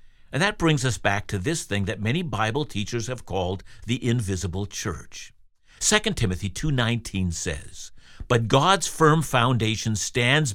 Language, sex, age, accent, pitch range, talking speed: English, male, 60-79, American, 115-170 Hz, 150 wpm